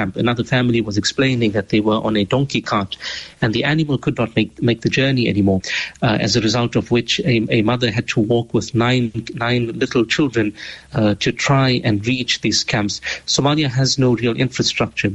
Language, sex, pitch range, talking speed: English, male, 110-135 Hz, 200 wpm